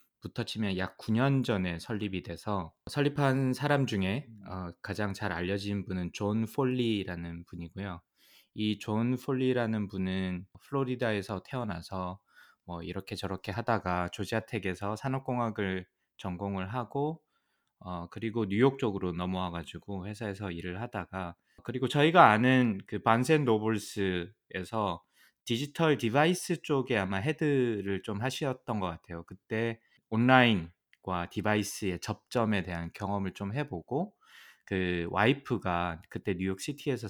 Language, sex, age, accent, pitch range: Korean, male, 20-39, native, 95-125 Hz